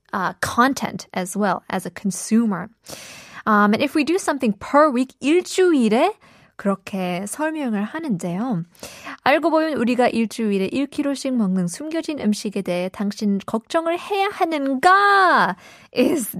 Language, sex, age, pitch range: Korean, female, 20-39, 195-295 Hz